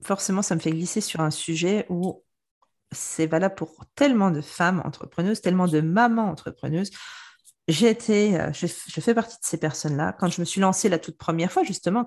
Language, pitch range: French, 170-235 Hz